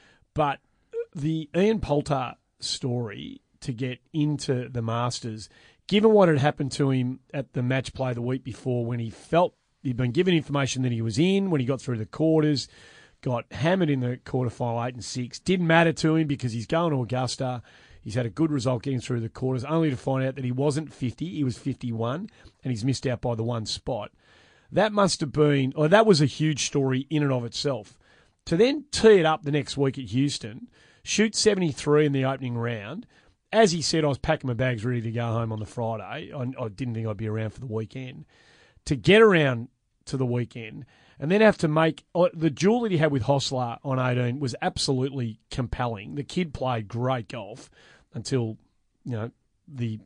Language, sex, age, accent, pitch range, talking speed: English, male, 30-49, Australian, 120-155 Hz, 205 wpm